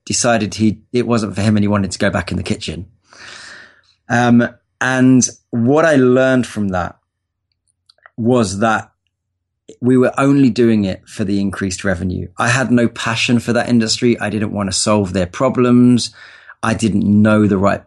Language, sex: English, male